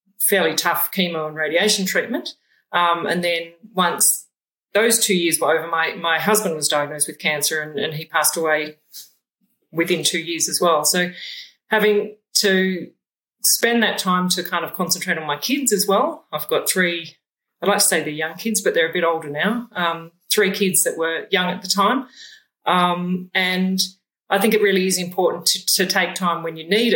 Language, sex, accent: English, female, Australian